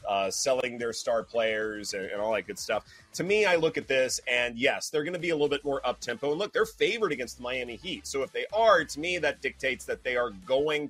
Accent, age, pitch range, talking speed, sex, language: American, 30-49, 130-165 Hz, 265 wpm, male, English